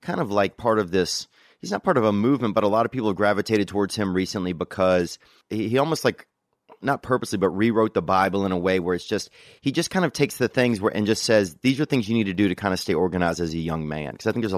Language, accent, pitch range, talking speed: English, American, 90-115 Hz, 290 wpm